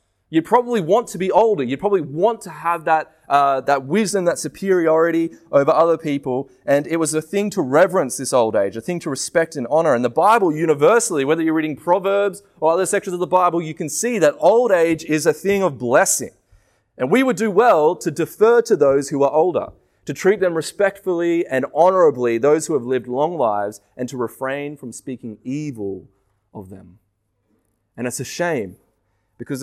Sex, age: male, 20-39